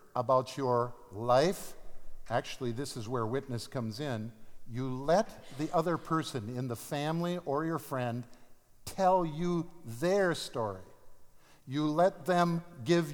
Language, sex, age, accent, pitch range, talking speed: English, male, 50-69, American, 130-170 Hz, 130 wpm